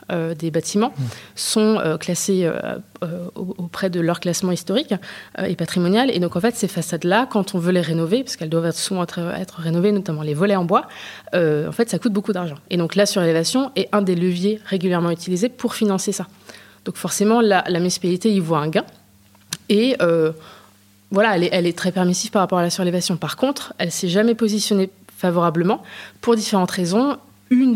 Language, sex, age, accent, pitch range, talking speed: French, female, 20-39, French, 170-205 Hz, 205 wpm